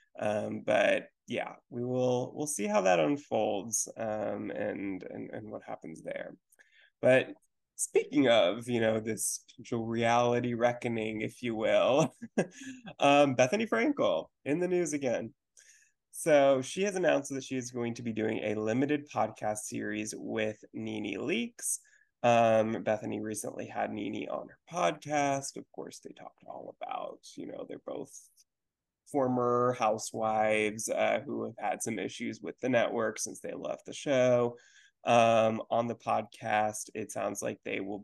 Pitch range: 110-150 Hz